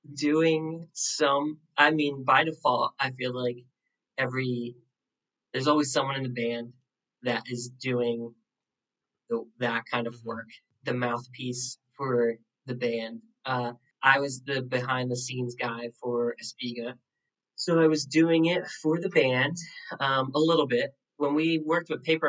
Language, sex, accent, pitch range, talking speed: English, male, American, 125-155 Hz, 150 wpm